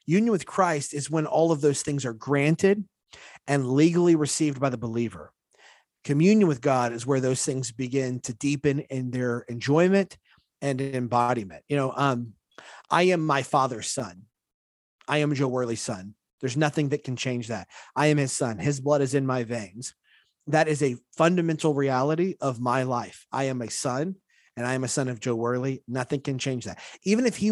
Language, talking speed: English, 190 wpm